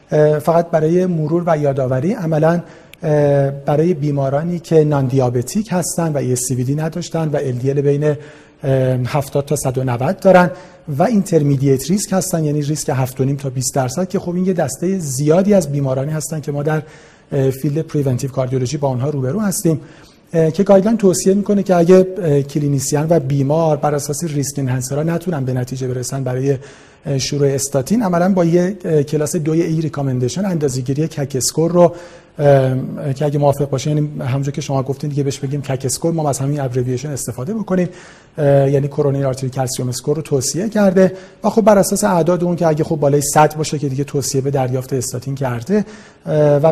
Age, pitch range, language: 40-59, 140-170 Hz, Persian